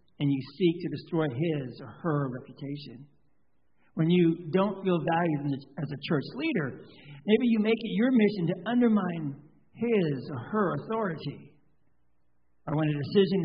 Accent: American